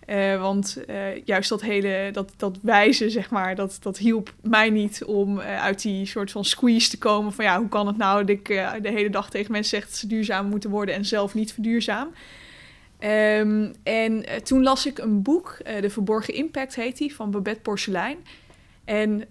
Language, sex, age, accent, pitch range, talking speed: Dutch, female, 20-39, Dutch, 200-230 Hz, 205 wpm